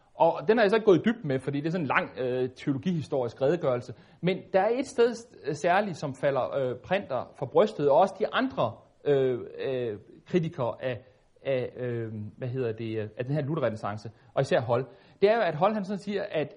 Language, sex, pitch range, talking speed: Danish, male, 135-200 Hz, 210 wpm